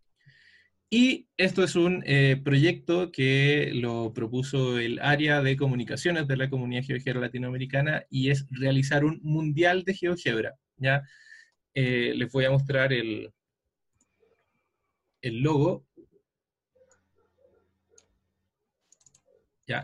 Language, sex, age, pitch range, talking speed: Spanish, male, 20-39, 130-165 Hz, 105 wpm